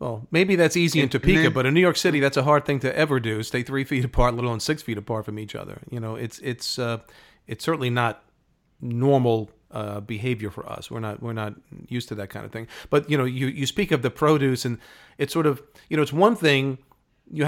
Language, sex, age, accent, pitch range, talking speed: English, male, 40-59, American, 125-155 Hz, 245 wpm